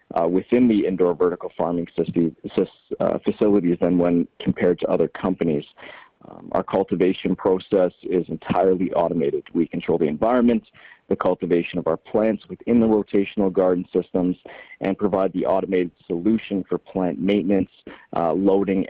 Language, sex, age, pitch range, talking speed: English, male, 40-59, 85-100 Hz, 145 wpm